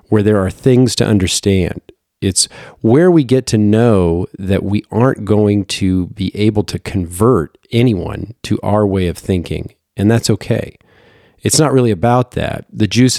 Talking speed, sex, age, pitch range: 170 wpm, male, 40-59, 90-110 Hz